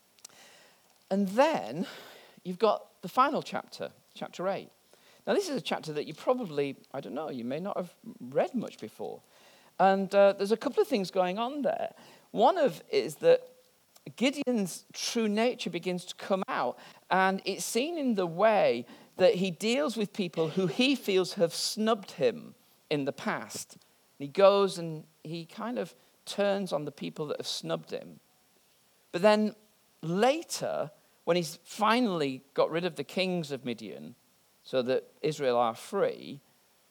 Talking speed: 165 wpm